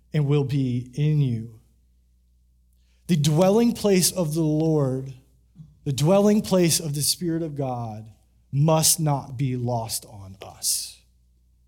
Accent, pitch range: American, 110-185 Hz